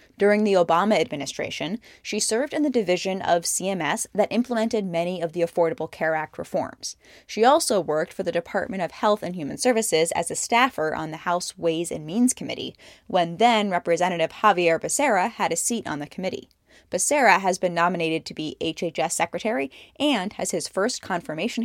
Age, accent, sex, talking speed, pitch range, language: 10-29, American, female, 175 wpm, 170-220 Hz, English